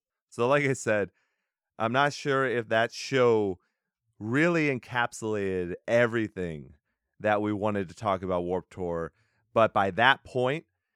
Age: 30-49